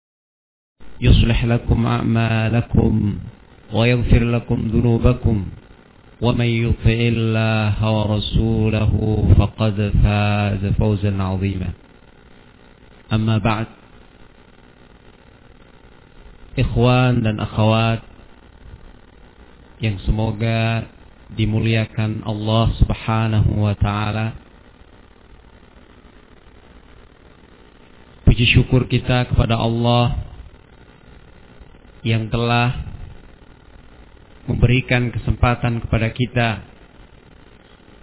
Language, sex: Malay, male